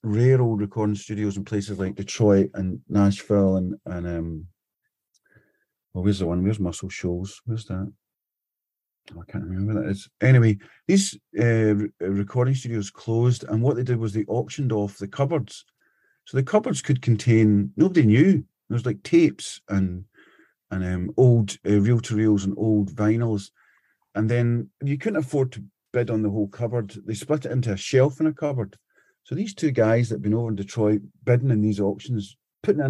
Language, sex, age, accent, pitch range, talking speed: English, male, 40-59, British, 100-130 Hz, 185 wpm